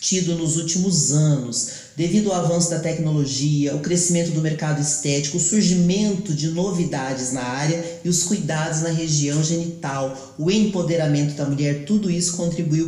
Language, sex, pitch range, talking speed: Portuguese, male, 150-180 Hz, 155 wpm